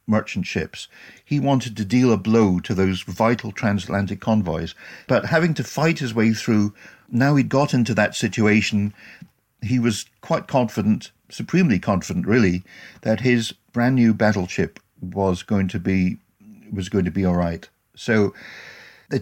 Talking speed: 155 wpm